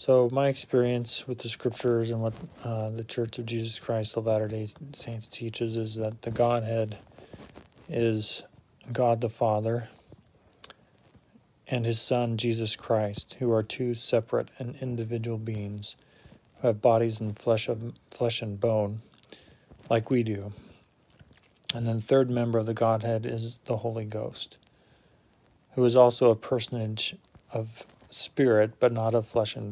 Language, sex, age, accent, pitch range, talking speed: English, male, 40-59, American, 110-120 Hz, 150 wpm